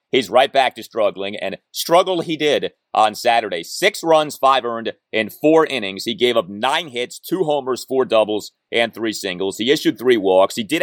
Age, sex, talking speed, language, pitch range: 30-49, male, 200 wpm, English, 115-155 Hz